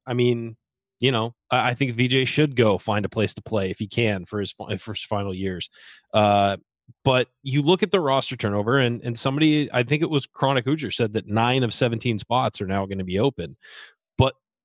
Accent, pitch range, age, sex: American, 105-130 Hz, 30-49, male